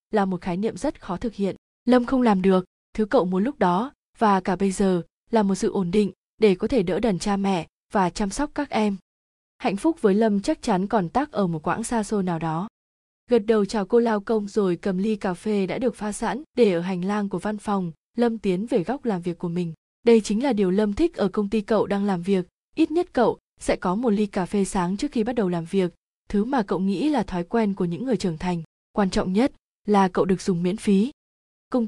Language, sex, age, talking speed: Vietnamese, female, 20-39, 250 wpm